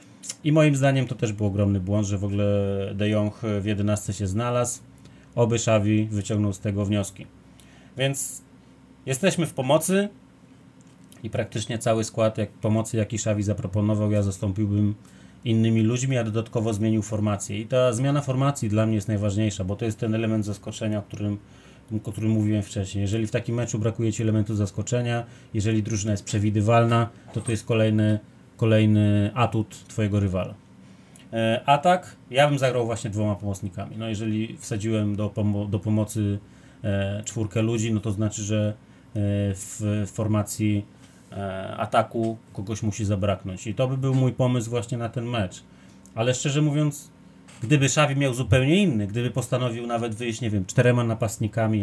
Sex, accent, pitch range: male, native, 105-120 Hz